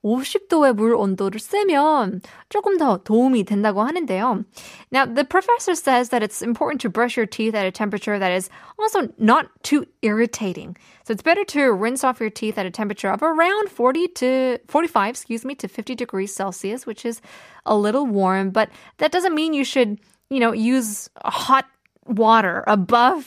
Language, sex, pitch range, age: Korean, female, 210-270 Hz, 20-39